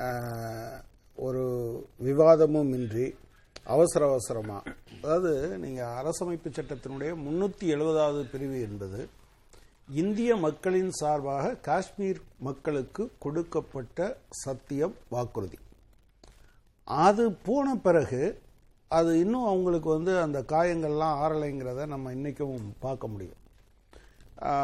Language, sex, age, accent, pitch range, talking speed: Tamil, male, 60-79, native, 130-170 Hz, 85 wpm